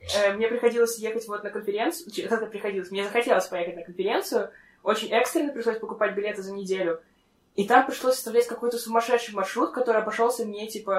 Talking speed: 170 wpm